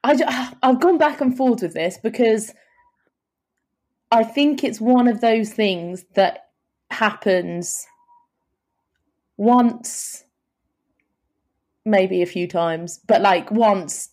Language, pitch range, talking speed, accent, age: English, 175-220 Hz, 115 wpm, British, 20-39